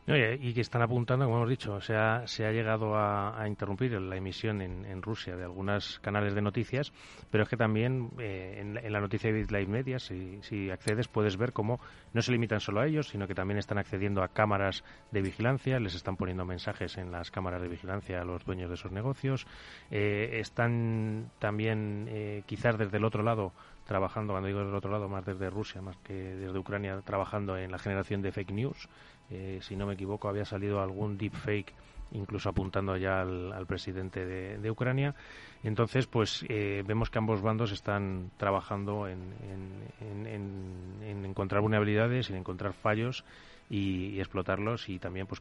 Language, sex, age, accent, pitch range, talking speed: Spanish, male, 30-49, Spanish, 95-110 Hz, 190 wpm